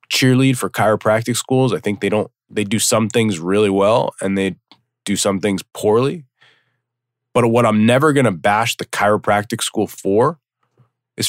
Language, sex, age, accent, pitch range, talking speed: English, male, 20-39, American, 105-130 Hz, 175 wpm